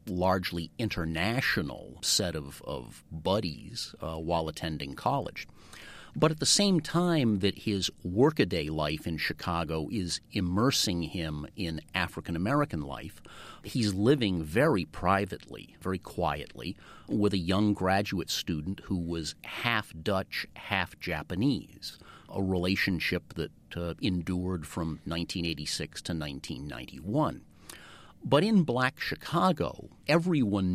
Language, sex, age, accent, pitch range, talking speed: English, male, 40-59, American, 85-115 Hz, 115 wpm